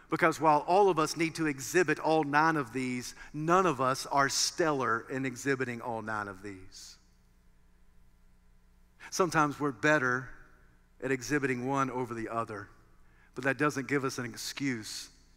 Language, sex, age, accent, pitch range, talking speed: English, male, 50-69, American, 115-165 Hz, 150 wpm